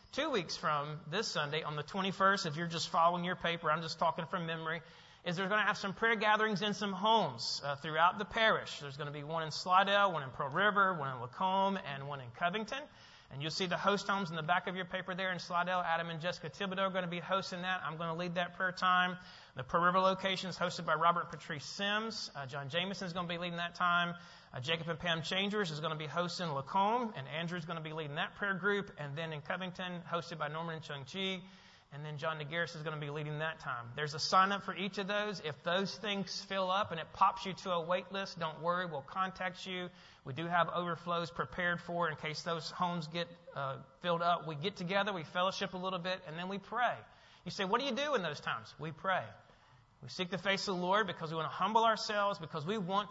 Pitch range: 160-195 Hz